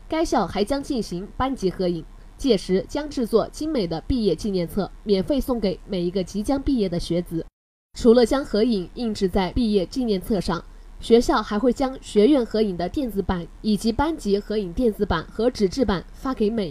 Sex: female